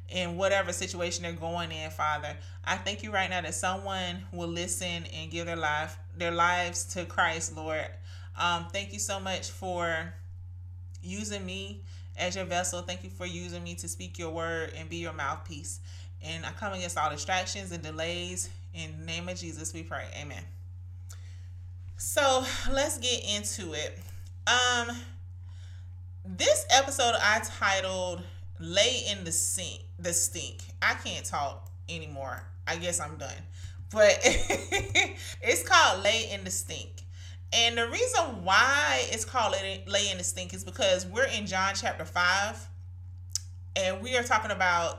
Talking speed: 155 wpm